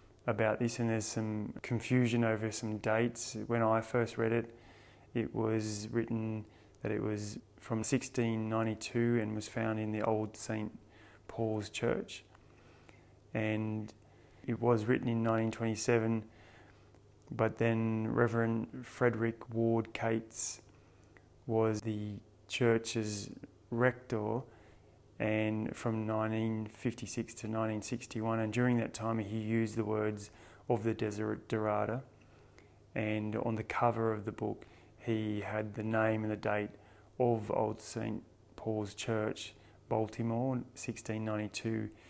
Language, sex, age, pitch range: English, male, 20-39, 105-115 Hz